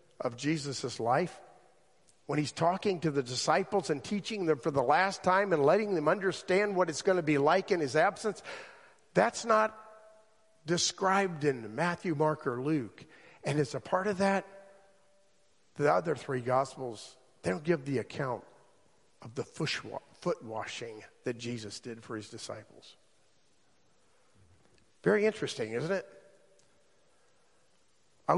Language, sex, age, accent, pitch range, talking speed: English, male, 50-69, American, 135-195 Hz, 140 wpm